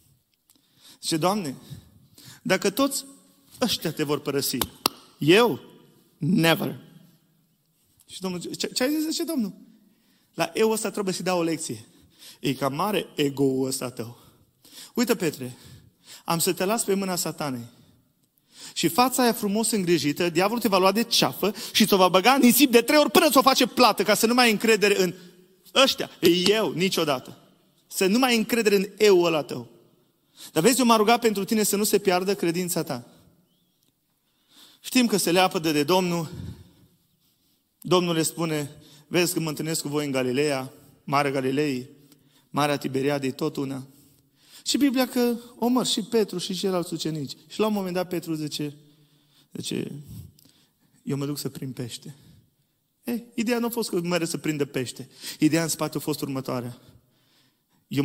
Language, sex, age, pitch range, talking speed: Romanian, male, 30-49, 140-210 Hz, 165 wpm